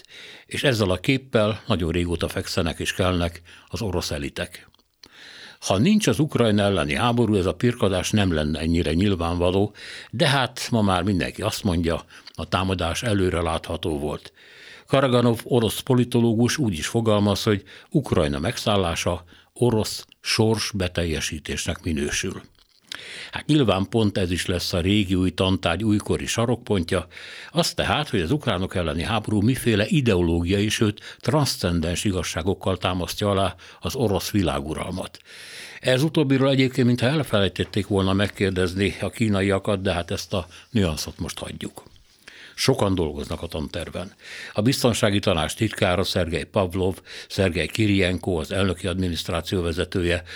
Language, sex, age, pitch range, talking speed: Hungarian, male, 60-79, 90-115 Hz, 130 wpm